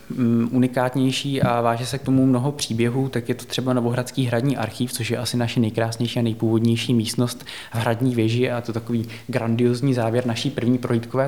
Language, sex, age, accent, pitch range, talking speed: Czech, male, 20-39, native, 115-130 Hz, 180 wpm